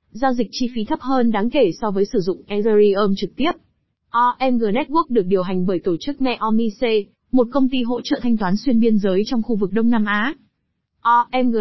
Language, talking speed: Vietnamese, 215 wpm